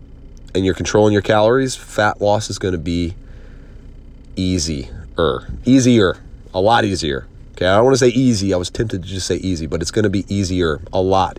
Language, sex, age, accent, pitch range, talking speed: English, male, 30-49, American, 90-110 Hz, 200 wpm